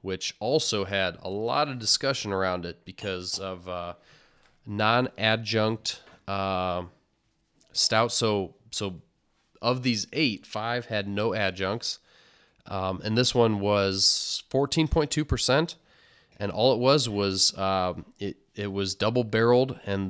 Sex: male